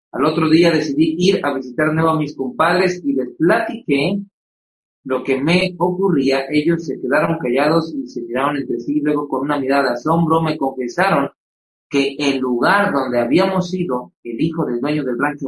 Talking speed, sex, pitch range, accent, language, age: 185 wpm, male, 125-155 Hz, Mexican, Spanish, 40-59